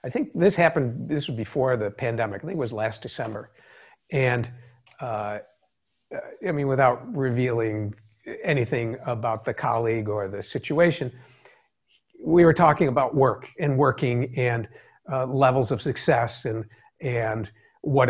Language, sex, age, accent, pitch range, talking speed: English, male, 60-79, American, 125-180 Hz, 145 wpm